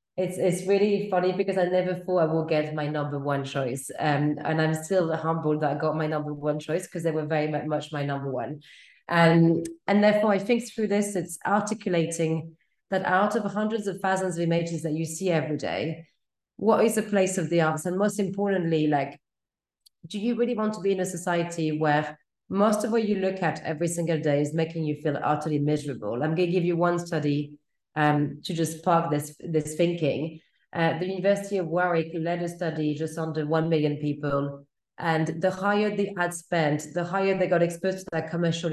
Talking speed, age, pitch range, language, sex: 205 wpm, 30-49, 155-185 Hz, English, female